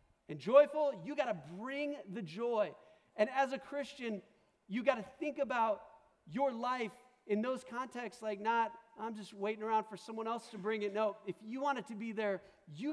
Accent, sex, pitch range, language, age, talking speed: American, male, 145-230 Hz, English, 40-59, 200 wpm